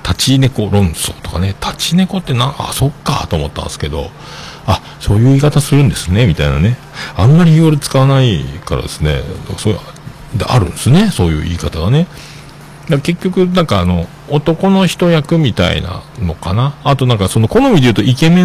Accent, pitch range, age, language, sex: native, 85-145 Hz, 50-69, Japanese, male